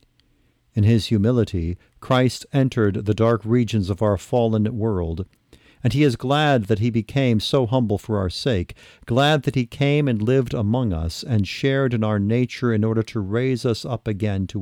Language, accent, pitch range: English, American, 100-125 Hz